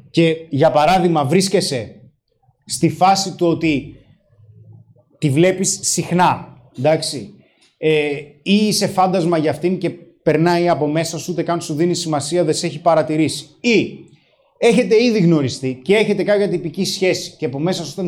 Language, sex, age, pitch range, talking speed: Greek, male, 20-39, 155-200 Hz, 155 wpm